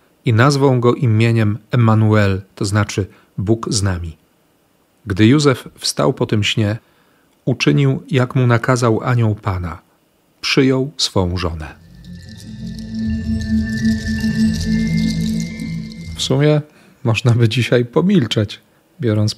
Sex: male